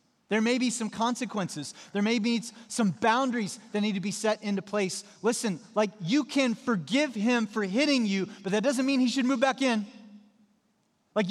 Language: English